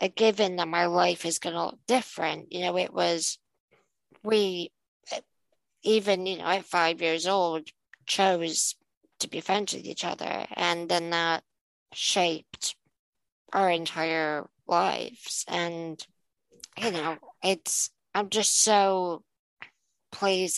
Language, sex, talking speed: English, female, 130 wpm